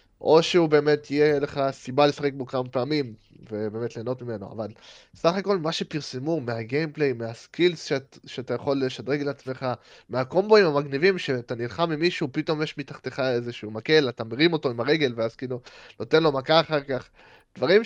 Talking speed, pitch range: 165 wpm, 120-160 Hz